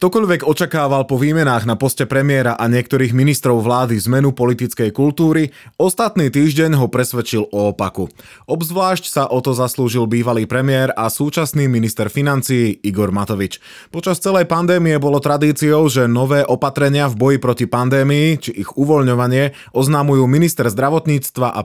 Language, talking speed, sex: Slovak, 145 wpm, male